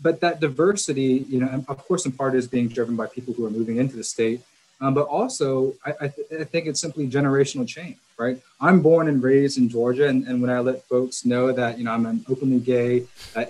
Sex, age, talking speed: male, 20-39, 240 wpm